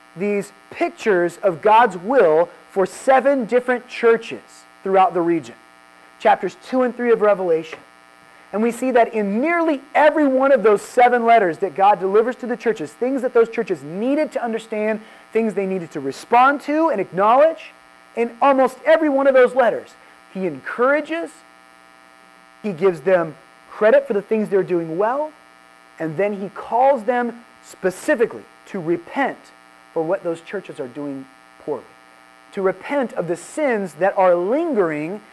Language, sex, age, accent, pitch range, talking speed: English, male, 30-49, American, 140-235 Hz, 160 wpm